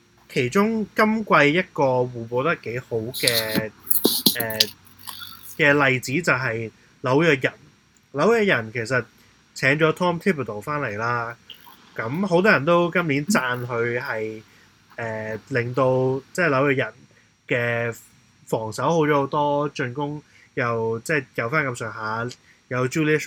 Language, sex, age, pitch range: Chinese, male, 20-39, 115-155 Hz